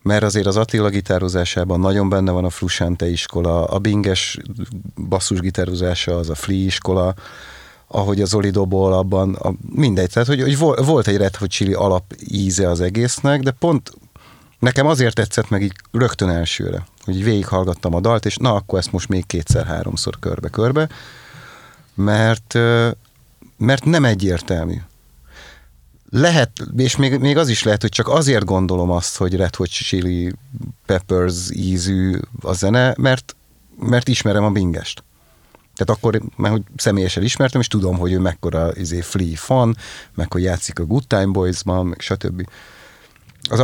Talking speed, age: 150 wpm, 30-49